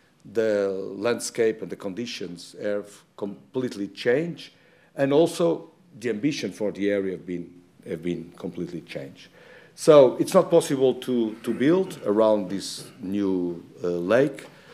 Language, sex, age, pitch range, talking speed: English, male, 50-69, 105-155 Hz, 135 wpm